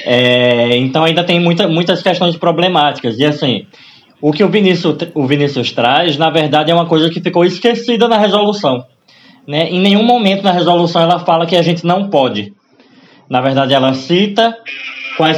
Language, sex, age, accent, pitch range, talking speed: Portuguese, male, 20-39, Brazilian, 140-175 Hz, 175 wpm